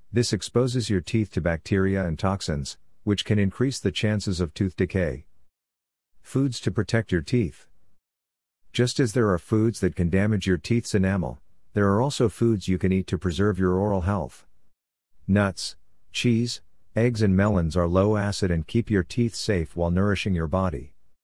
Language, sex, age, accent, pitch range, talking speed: English, male, 50-69, American, 85-100 Hz, 170 wpm